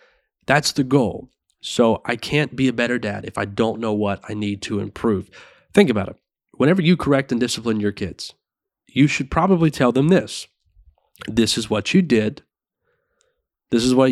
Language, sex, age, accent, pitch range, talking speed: English, male, 30-49, American, 110-150 Hz, 185 wpm